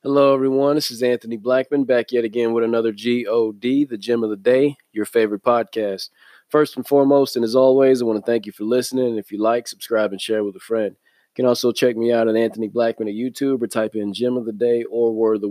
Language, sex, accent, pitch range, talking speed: English, male, American, 105-125 Hz, 250 wpm